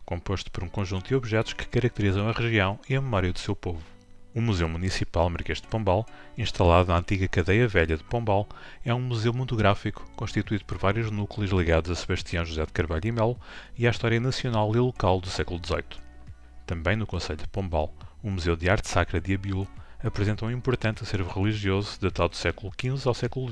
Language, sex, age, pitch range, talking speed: Portuguese, male, 30-49, 90-115 Hz, 195 wpm